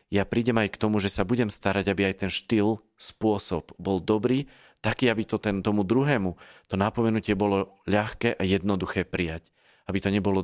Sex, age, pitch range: male, 40-59, 95-110 Hz